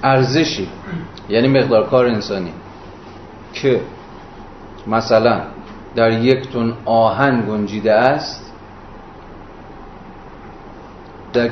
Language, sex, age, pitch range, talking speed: Persian, male, 40-59, 100-125 Hz, 75 wpm